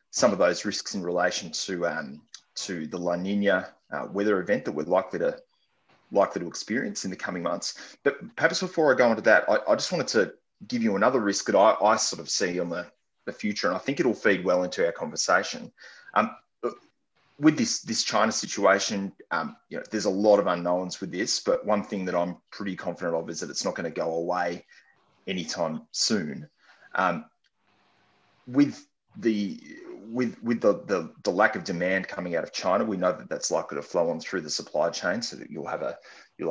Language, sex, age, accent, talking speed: English, male, 30-49, Australian, 210 wpm